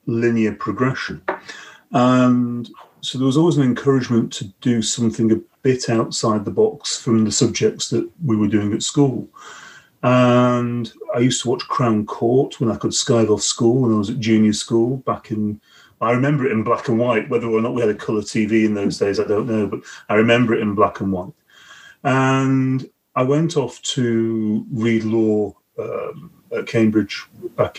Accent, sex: British, male